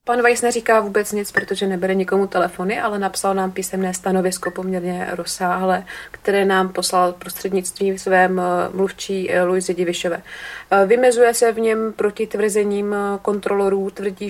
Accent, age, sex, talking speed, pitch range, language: native, 30-49, female, 135 wpm, 190-210 Hz, Czech